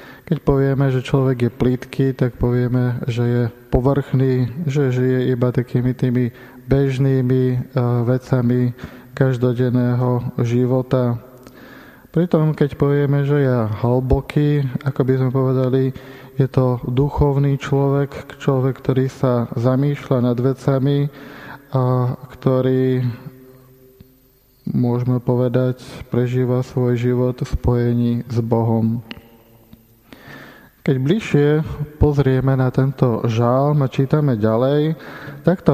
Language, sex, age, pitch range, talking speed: Slovak, male, 20-39, 125-140 Hz, 100 wpm